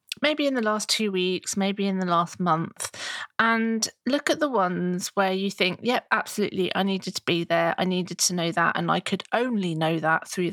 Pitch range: 180-235 Hz